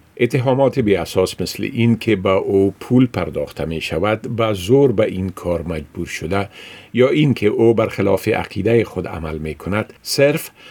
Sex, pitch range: male, 95-120 Hz